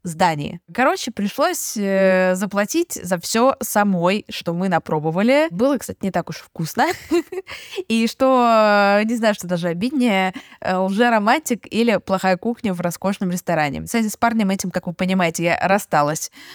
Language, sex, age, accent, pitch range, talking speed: Russian, female, 20-39, native, 180-235 Hz, 150 wpm